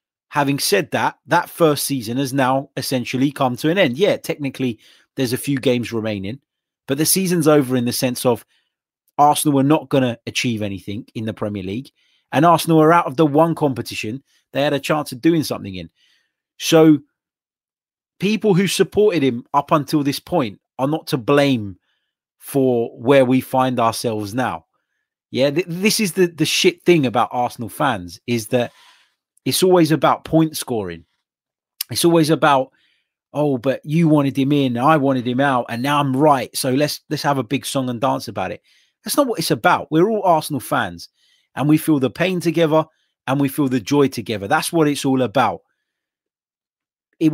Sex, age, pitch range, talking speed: male, 30-49, 125-155 Hz, 185 wpm